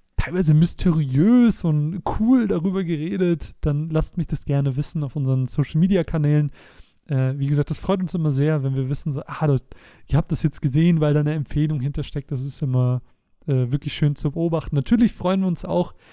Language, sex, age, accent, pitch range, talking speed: German, male, 30-49, German, 135-160 Hz, 195 wpm